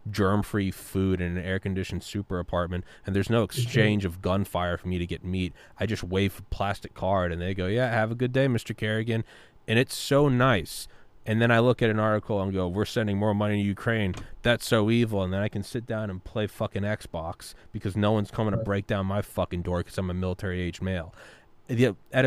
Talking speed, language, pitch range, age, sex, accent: 225 wpm, English, 95-115 Hz, 20-39, male, American